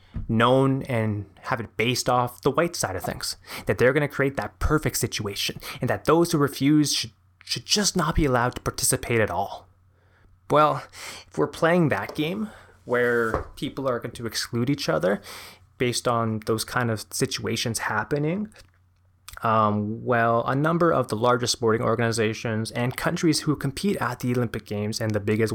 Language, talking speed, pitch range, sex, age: English, 175 wpm, 100-135 Hz, male, 20-39